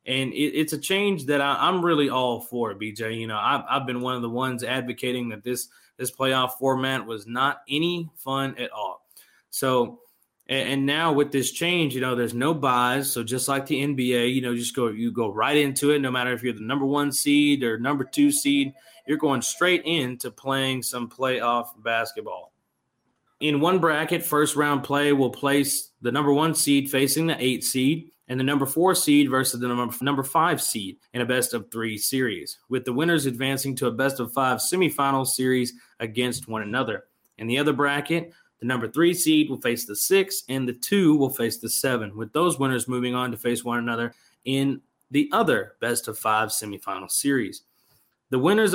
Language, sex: English, male